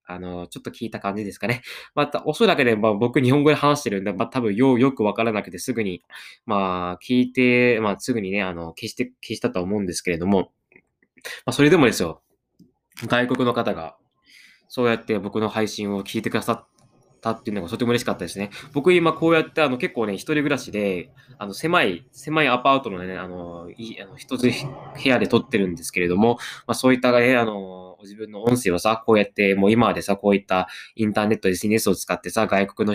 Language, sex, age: Japanese, male, 20-39